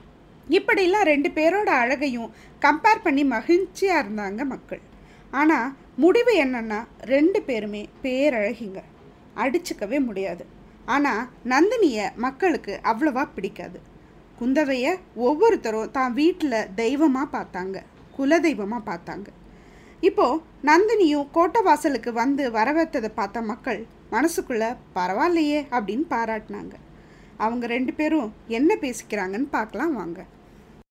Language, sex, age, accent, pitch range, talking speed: Tamil, female, 20-39, native, 230-325 Hz, 95 wpm